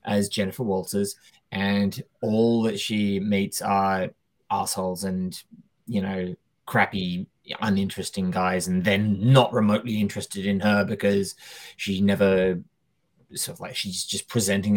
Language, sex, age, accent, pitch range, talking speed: English, male, 20-39, British, 100-125 Hz, 130 wpm